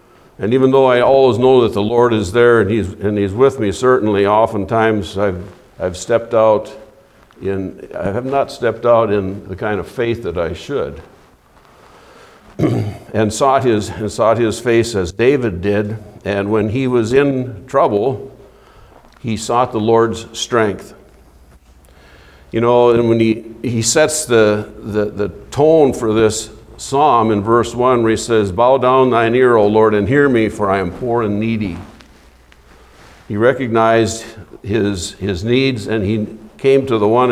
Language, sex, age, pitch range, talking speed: English, male, 60-79, 100-120 Hz, 165 wpm